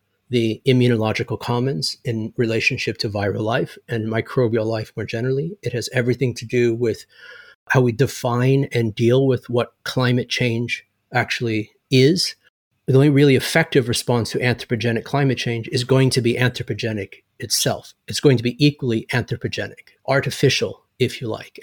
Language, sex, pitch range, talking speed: English, male, 110-130 Hz, 155 wpm